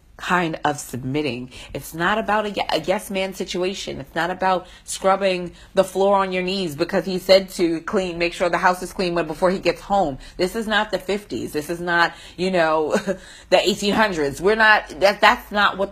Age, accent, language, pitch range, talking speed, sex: 30-49, American, English, 150-195 Hz, 200 wpm, female